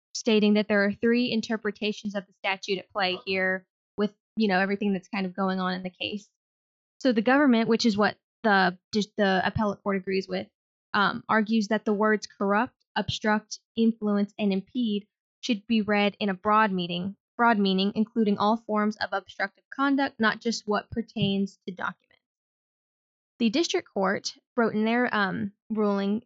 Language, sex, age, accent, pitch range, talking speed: English, female, 10-29, American, 195-225 Hz, 170 wpm